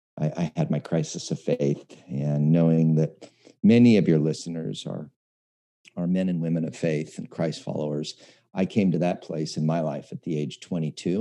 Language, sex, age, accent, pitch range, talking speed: English, male, 40-59, American, 80-100 Hz, 185 wpm